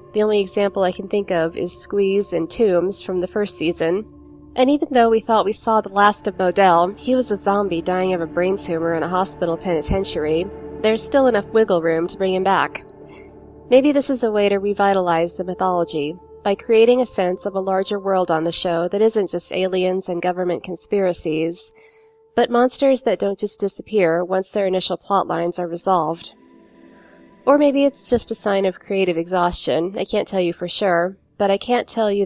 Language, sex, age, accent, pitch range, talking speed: English, female, 20-39, American, 180-210 Hz, 200 wpm